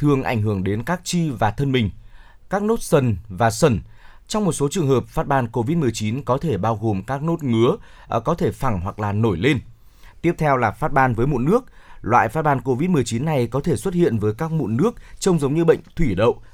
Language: Vietnamese